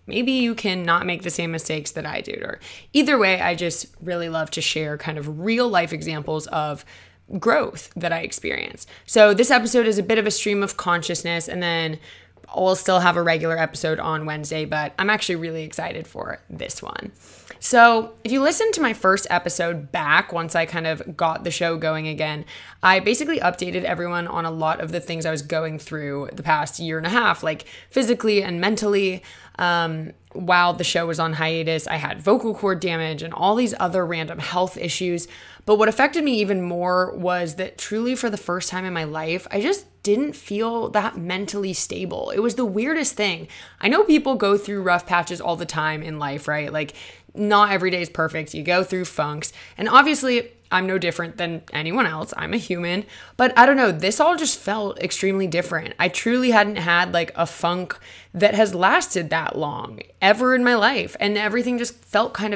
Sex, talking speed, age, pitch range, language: female, 205 wpm, 20-39, 165-215 Hz, English